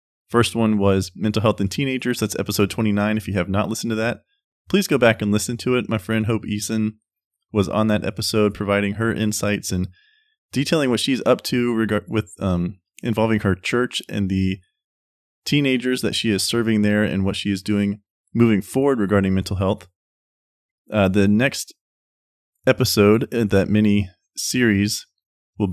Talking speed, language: 175 wpm, English